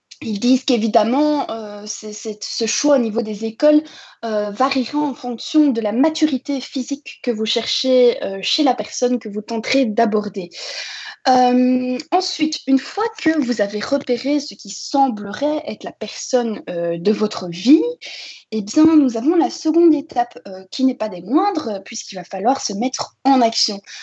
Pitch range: 225-300 Hz